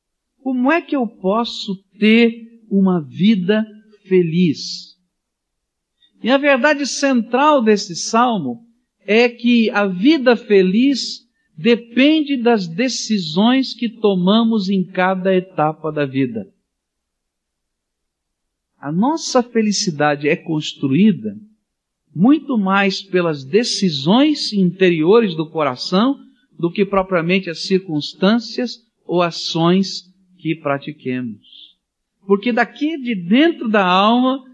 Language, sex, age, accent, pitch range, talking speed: English, male, 50-69, Brazilian, 170-235 Hz, 100 wpm